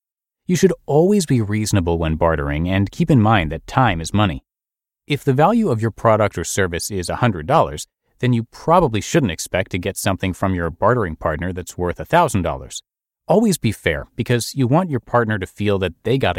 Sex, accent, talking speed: male, American, 195 wpm